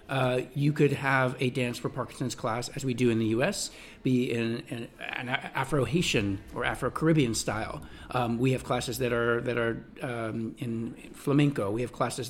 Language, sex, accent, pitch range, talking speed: English, male, American, 120-145 Hz, 180 wpm